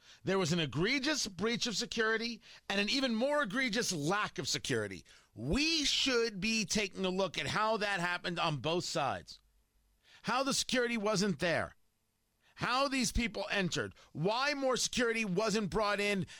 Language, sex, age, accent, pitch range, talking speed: English, male, 40-59, American, 160-230 Hz, 155 wpm